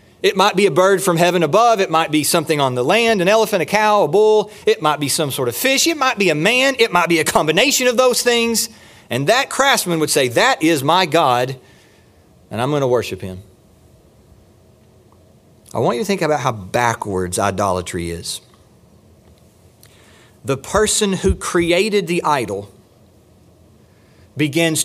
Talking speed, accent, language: 175 wpm, American, English